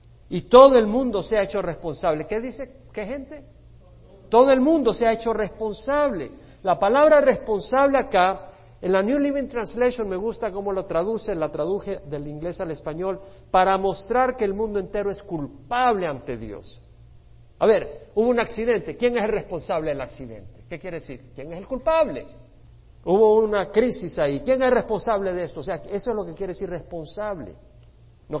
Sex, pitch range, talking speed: male, 150-230 Hz, 180 wpm